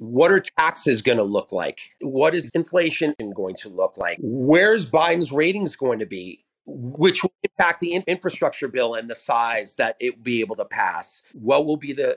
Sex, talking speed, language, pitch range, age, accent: male, 195 wpm, English, 130-185 Hz, 40-59, American